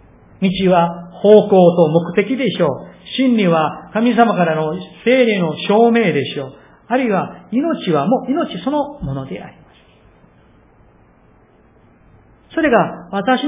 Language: Japanese